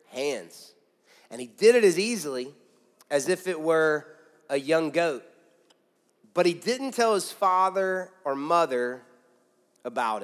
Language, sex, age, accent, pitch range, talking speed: English, male, 30-49, American, 160-200 Hz, 135 wpm